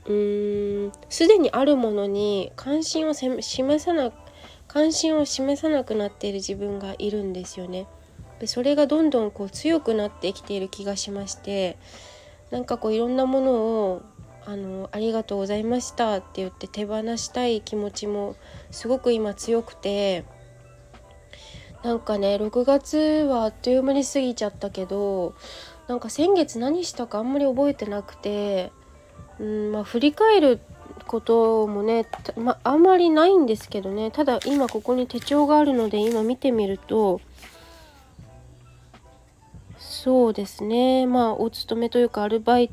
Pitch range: 195-245 Hz